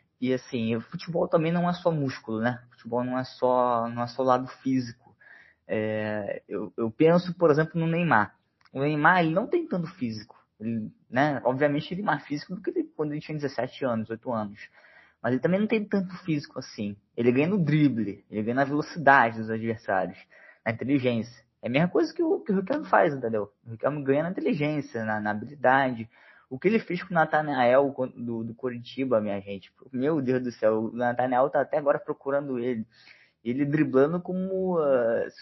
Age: 20-39